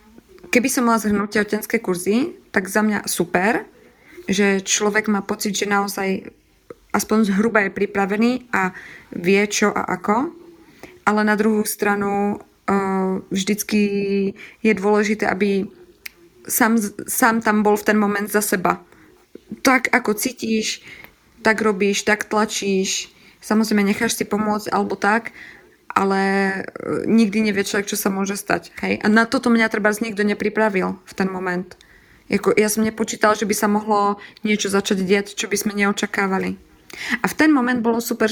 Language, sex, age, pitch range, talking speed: Czech, female, 20-39, 195-220 Hz, 150 wpm